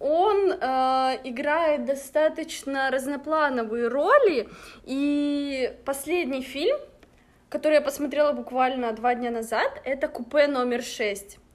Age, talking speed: 20-39, 105 wpm